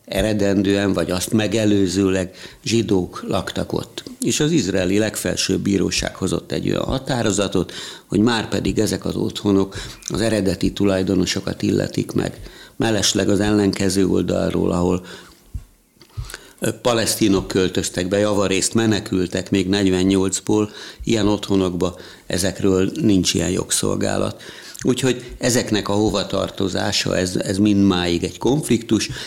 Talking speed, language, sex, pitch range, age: 110 wpm, Hungarian, male, 90-105 Hz, 60-79